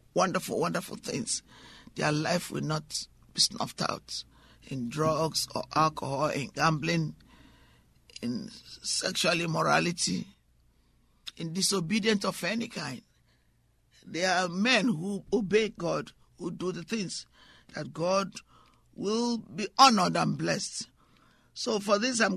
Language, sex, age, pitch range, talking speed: English, male, 50-69, 150-205 Hz, 120 wpm